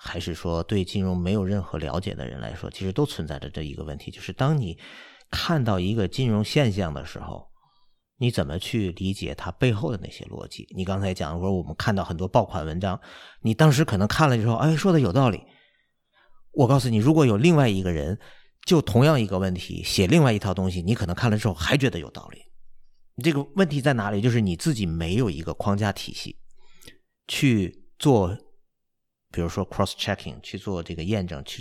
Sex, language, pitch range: male, Chinese, 90-120 Hz